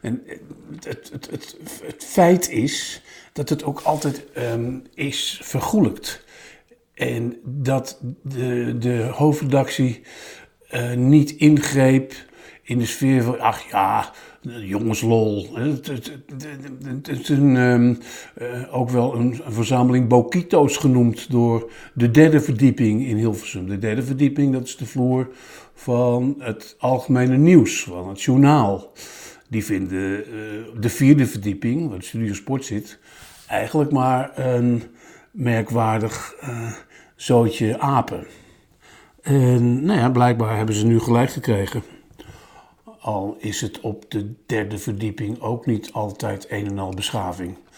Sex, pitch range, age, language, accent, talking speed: male, 115-140 Hz, 60-79, Dutch, Dutch, 130 wpm